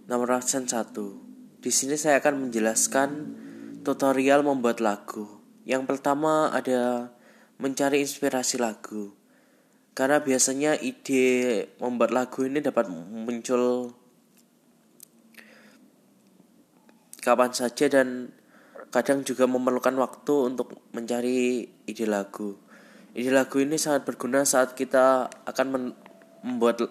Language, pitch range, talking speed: Indonesian, 125-150 Hz, 95 wpm